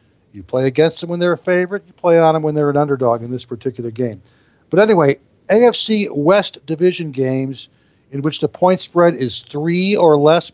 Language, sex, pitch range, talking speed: English, male, 130-165 Hz, 200 wpm